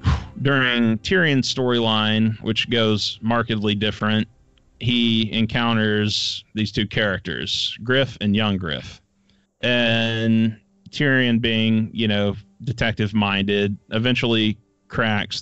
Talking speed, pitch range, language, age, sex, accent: 95 wpm, 100-115 Hz, English, 30-49, male, American